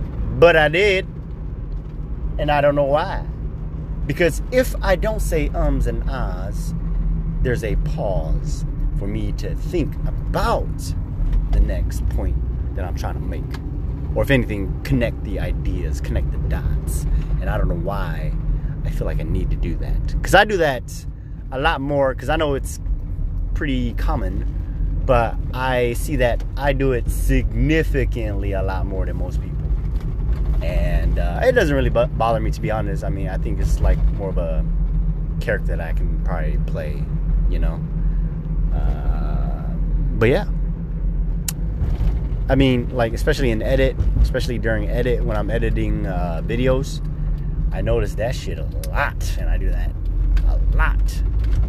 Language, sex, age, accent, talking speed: English, male, 30-49, American, 160 wpm